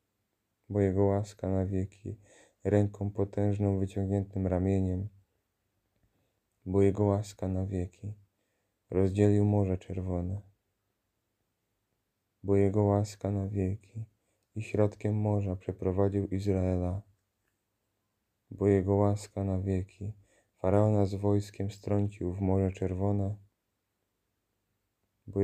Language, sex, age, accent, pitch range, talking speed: Polish, male, 20-39, native, 95-105 Hz, 95 wpm